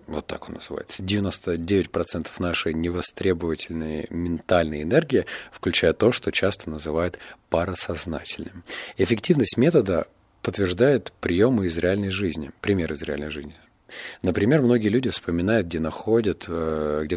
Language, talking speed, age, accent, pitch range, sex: Russian, 115 wpm, 30-49, native, 80-105 Hz, male